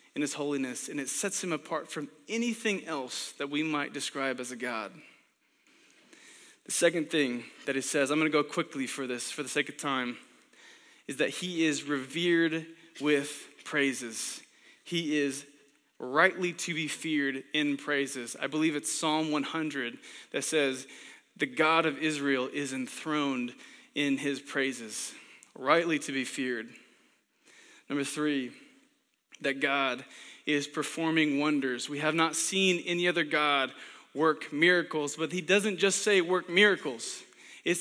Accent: American